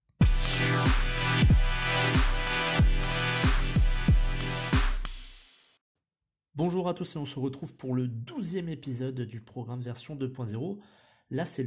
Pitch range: 105-140 Hz